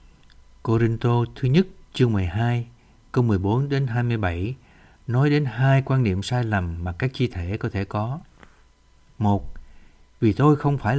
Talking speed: 155 wpm